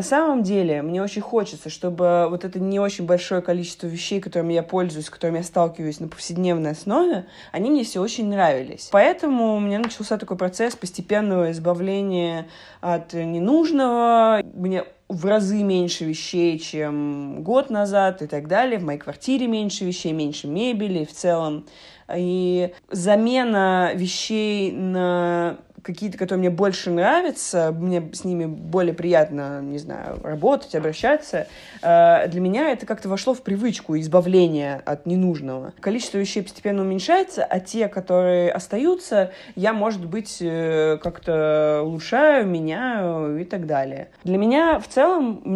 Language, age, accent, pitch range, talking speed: Russian, 20-39, native, 170-210 Hz, 140 wpm